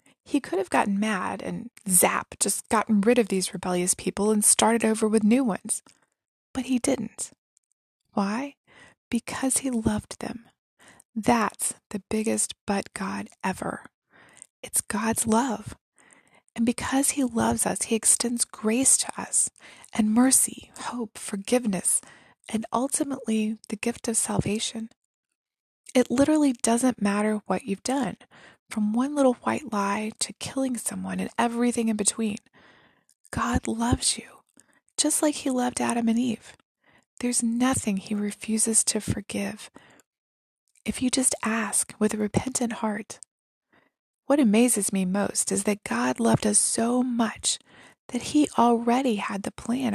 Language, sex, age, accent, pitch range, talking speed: English, female, 20-39, American, 210-250 Hz, 140 wpm